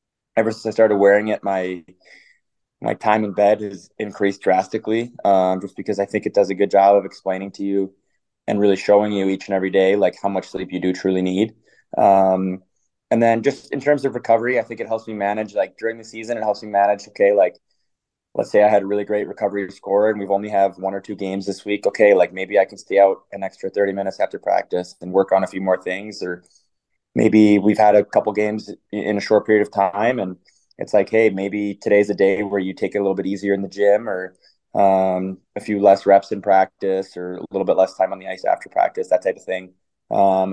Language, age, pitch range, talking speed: English, 20-39, 95-105 Hz, 240 wpm